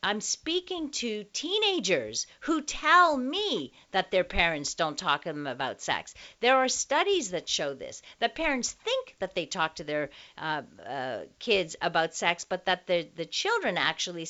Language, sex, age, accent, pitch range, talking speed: English, female, 50-69, American, 165-265 Hz, 170 wpm